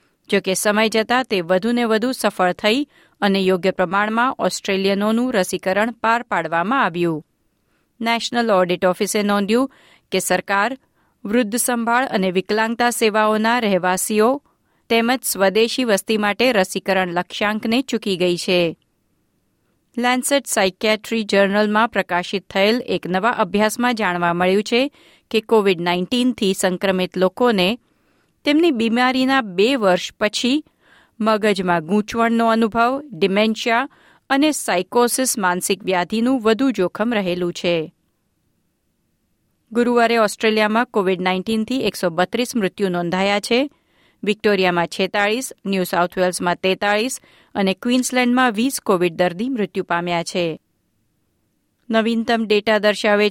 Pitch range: 185-235 Hz